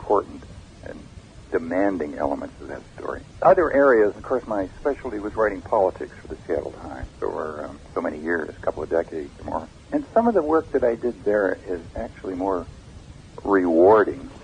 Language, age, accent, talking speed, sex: English, 60-79, American, 180 wpm, male